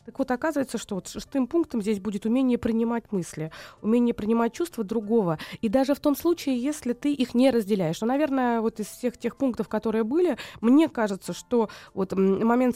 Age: 20-39